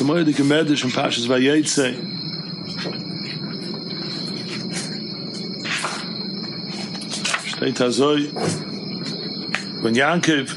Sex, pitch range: male, 150-180 Hz